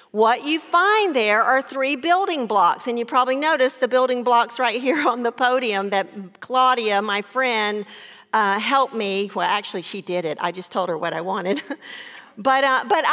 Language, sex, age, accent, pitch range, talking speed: English, female, 50-69, American, 225-295 Hz, 190 wpm